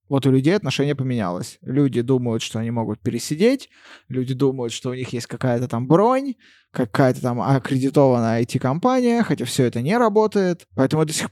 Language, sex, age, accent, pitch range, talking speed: Russian, male, 20-39, native, 130-195 Hz, 170 wpm